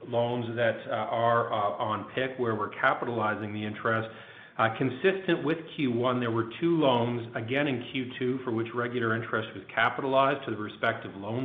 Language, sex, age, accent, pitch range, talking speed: English, male, 40-59, American, 115-145 Hz, 175 wpm